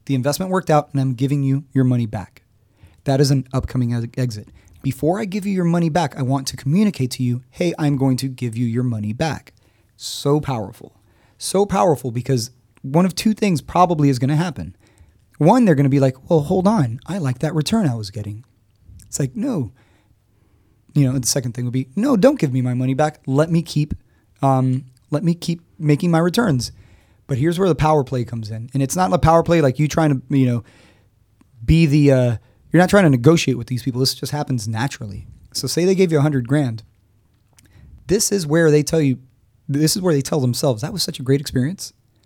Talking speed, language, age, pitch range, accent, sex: 220 wpm, English, 30-49, 115-155 Hz, American, male